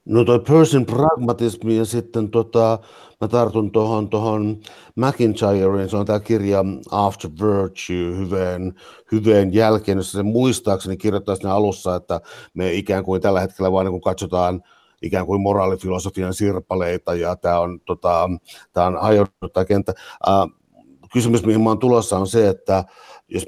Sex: male